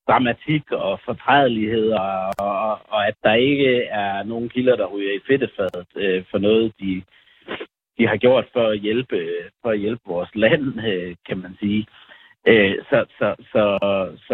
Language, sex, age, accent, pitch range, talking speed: Danish, male, 60-79, native, 95-120 Hz, 165 wpm